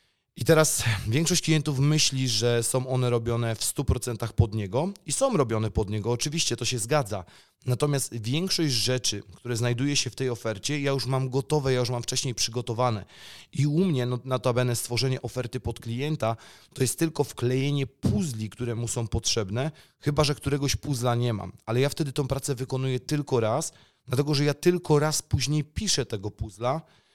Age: 30-49